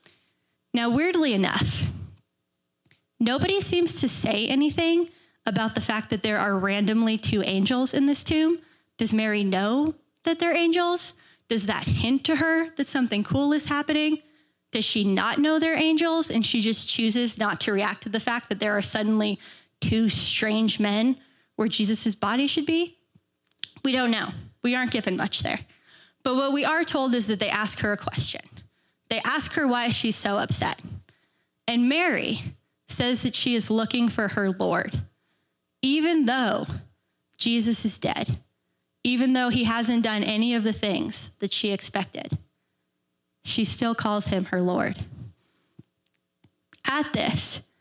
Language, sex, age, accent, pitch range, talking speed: English, female, 10-29, American, 210-285 Hz, 160 wpm